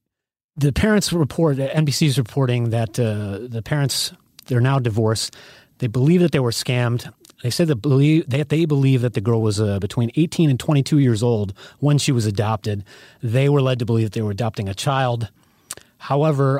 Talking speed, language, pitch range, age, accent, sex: 185 wpm, English, 110-140 Hz, 30-49, American, male